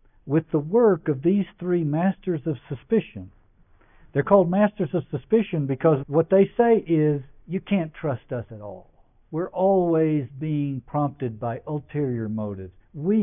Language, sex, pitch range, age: English, male, 105-150 Hz, 60-79